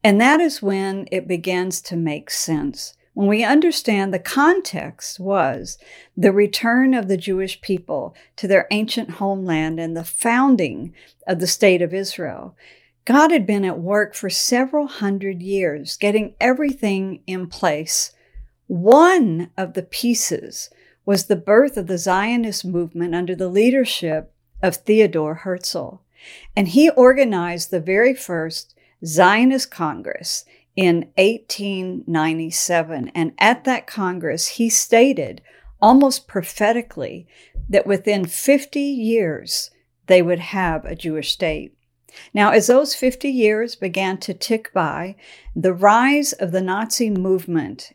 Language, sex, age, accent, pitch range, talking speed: English, female, 50-69, American, 180-230 Hz, 135 wpm